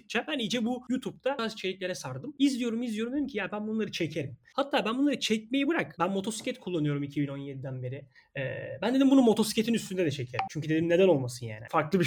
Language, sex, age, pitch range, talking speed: Turkish, male, 30-49, 155-225 Hz, 195 wpm